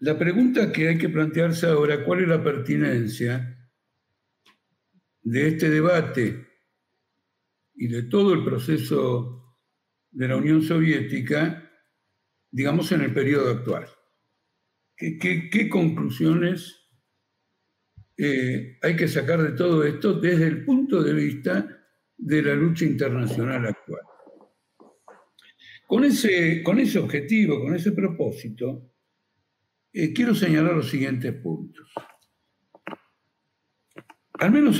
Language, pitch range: Spanish, 130-180 Hz